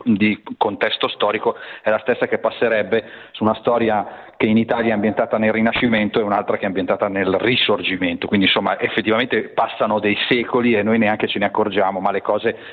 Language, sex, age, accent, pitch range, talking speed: Italian, male, 40-59, native, 100-115 Hz, 190 wpm